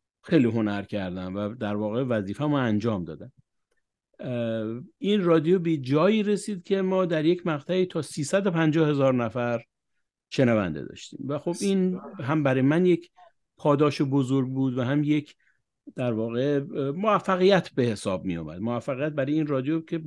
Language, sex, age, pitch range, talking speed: Persian, male, 50-69, 115-160 Hz, 155 wpm